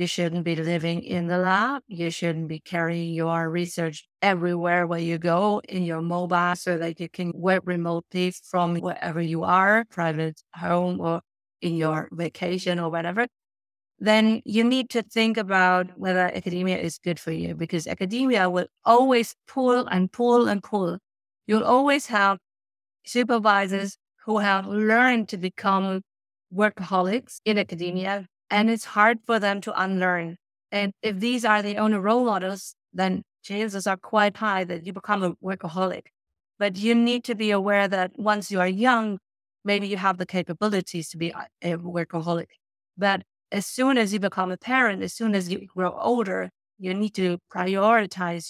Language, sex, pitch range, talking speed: English, female, 175-210 Hz, 165 wpm